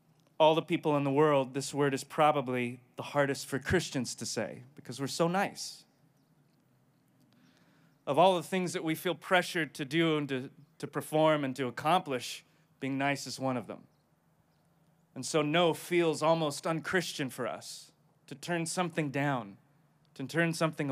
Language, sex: English, male